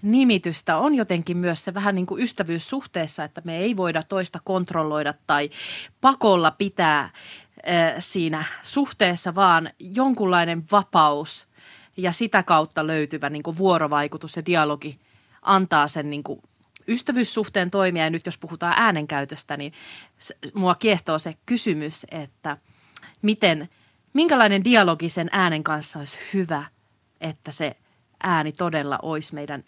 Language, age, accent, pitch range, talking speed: Finnish, 30-49, native, 155-200 Hz, 130 wpm